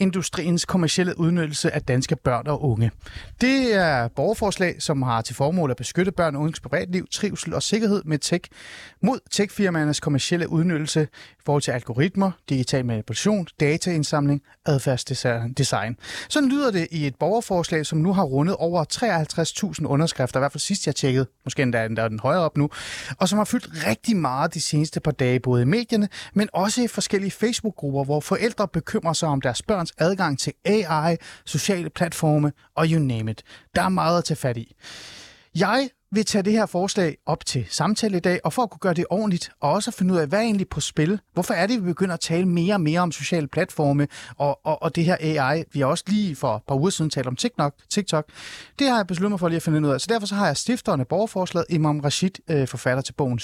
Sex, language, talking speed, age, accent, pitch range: male, Danish, 210 wpm, 30-49, native, 145-195 Hz